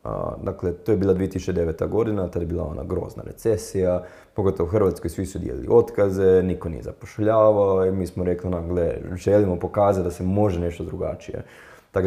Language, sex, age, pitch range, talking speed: Croatian, male, 20-39, 85-110 Hz, 175 wpm